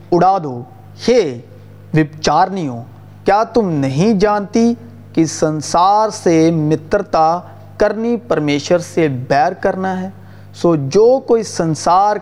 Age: 40-59